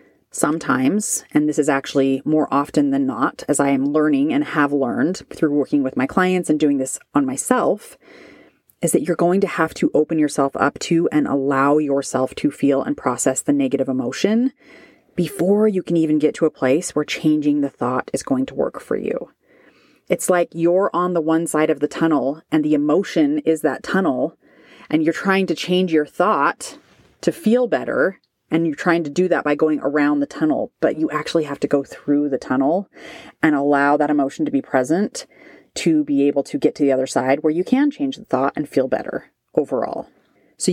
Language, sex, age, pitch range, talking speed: English, female, 30-49, 145-190 Hz, 205 wpm